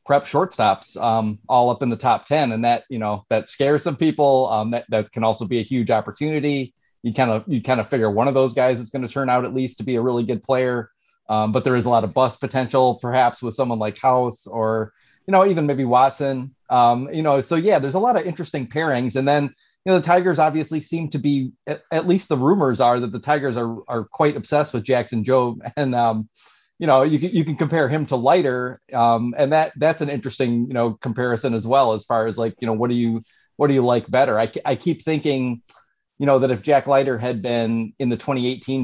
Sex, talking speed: male, 245 wpm